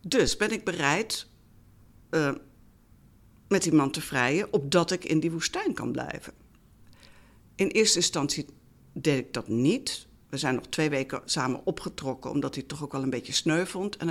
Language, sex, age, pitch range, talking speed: Dutch, female, 60-79, 145-215 Hz, 175 wpm